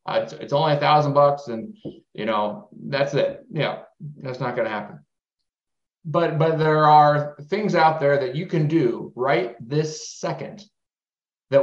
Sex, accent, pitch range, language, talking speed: male, American, 140-185 Hz, English, 170 wpm